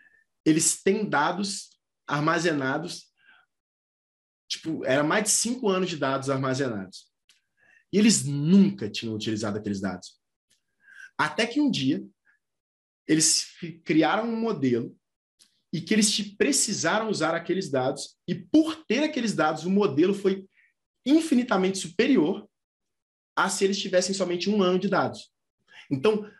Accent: Brazilian